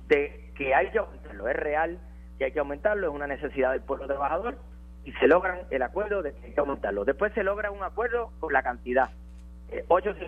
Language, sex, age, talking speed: Spanish, male, 30-49, 215 wpm